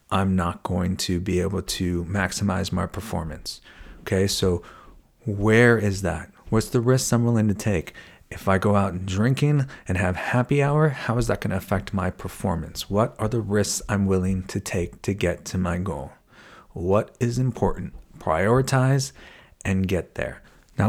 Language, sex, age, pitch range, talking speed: English, male, 40-59, 95-125 Hz, 170 wpm